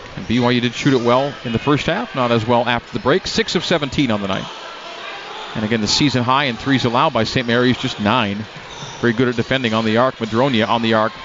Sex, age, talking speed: male, 40-59, 240 wpm